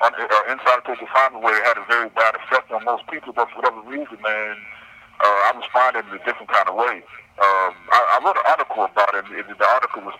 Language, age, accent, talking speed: English, 50-69, American, 260 wpm